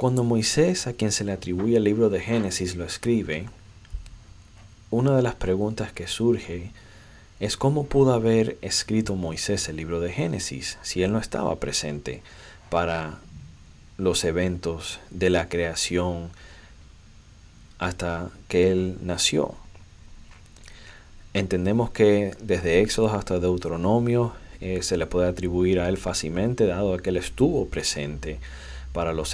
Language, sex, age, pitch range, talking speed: Spanish, male, 40-59, 80-105 Hz, 135 wpm